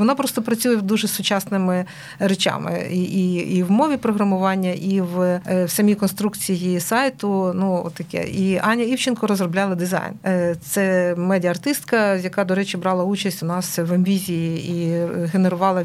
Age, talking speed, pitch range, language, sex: 50-69, 140 wpm, 180-225 Hz, Ukrainian, female